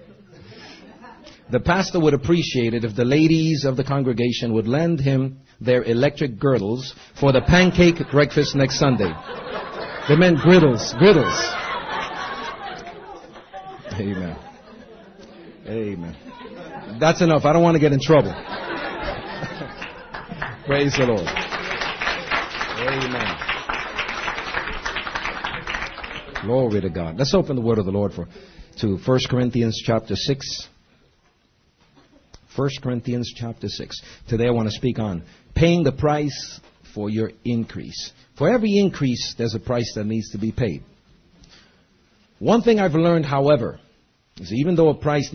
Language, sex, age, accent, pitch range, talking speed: English, male, 50-69, American, 115-150 Hz, 125 wpm